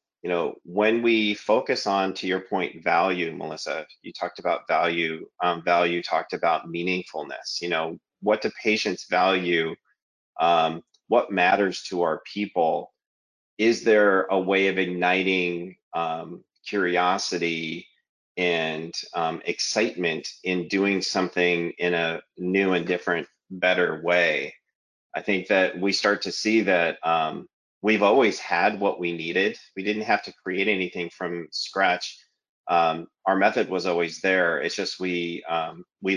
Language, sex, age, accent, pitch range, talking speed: English, male, 30-49, American, 85-100 Hz, 145 wpm